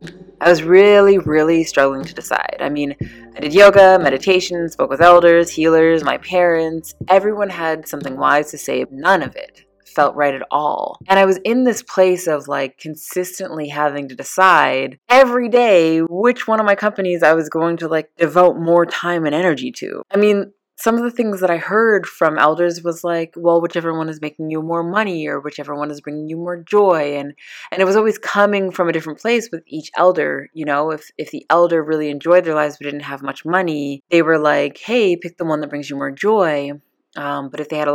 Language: English